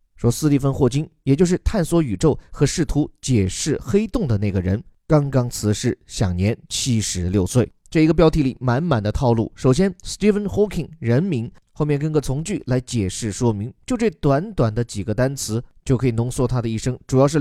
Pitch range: 120-160 Hz